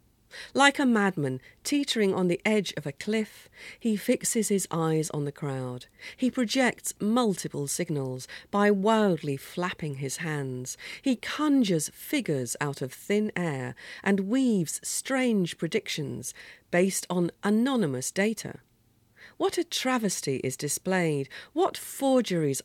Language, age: English, 40-59